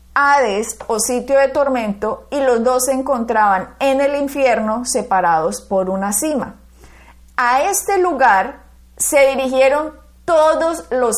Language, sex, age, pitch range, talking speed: Spanish, female, 30-49, 215-275 Hz, 130 wpm